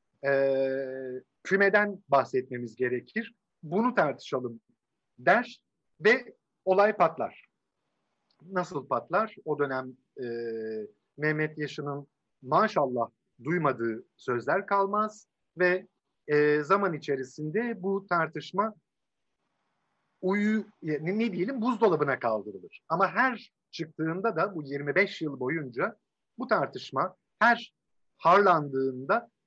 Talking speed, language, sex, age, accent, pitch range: 90 wpm, Turkish, male, 50-69, native, 140-200 Hz